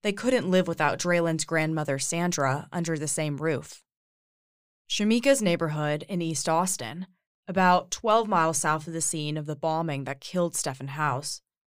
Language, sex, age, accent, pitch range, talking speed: English, female, 20-39, American, 145-180 Hz, 155 wpm